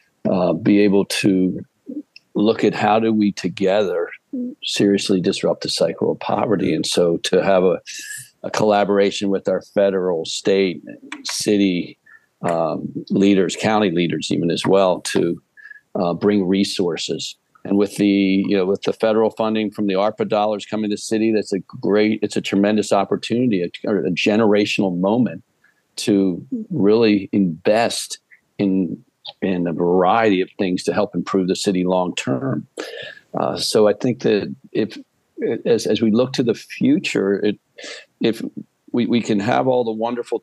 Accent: American